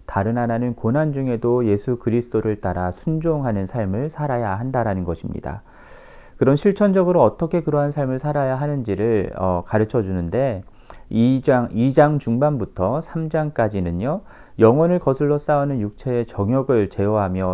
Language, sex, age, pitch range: Korean, male, 40-59, 100-145 Hz